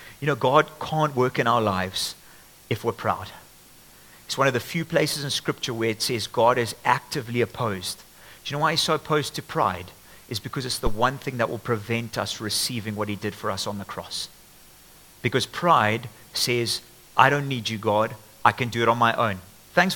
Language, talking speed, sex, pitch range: English, 210 wpm, male, 110-130 Hz